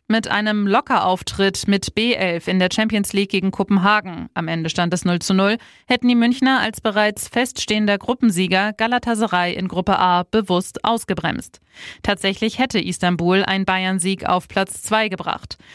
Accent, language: German, German